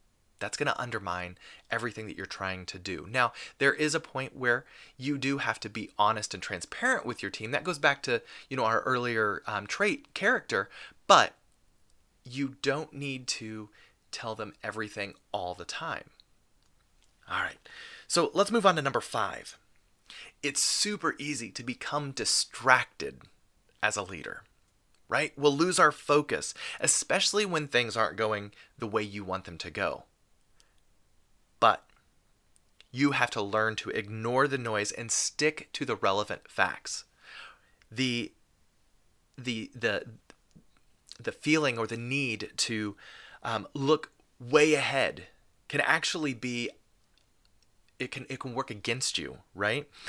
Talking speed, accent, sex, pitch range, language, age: 145 wpm, American, male, 105-145 Hz, English, 30-49